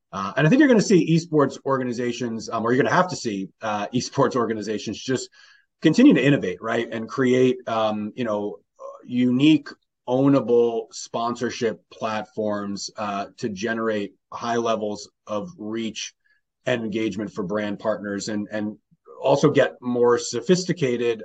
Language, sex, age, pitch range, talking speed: English, male, 30-49, 105-120 Hz, 150 wpm